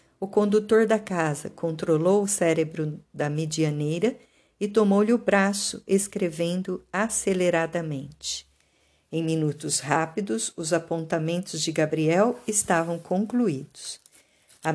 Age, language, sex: 50-69, Portuguese, female